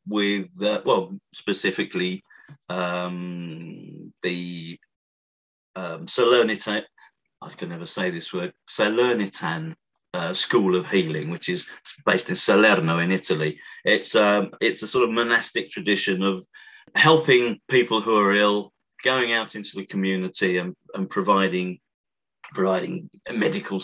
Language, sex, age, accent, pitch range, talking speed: English, male, 40-59, British, 95-115 Hz, 125 wpm